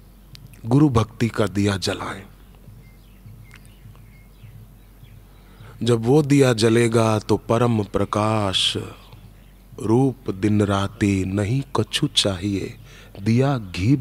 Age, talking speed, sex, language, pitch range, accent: 30-49, 85 wpm, male, Hindi, 100-120 Hz, native